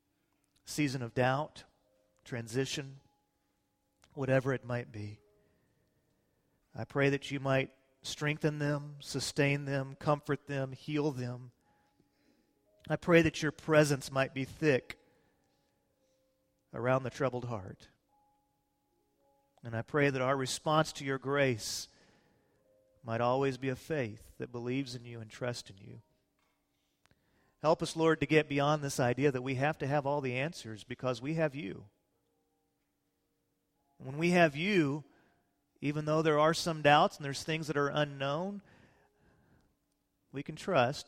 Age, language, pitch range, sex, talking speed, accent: 40-59, English, 115-145 Hz, male, 135 wpm, American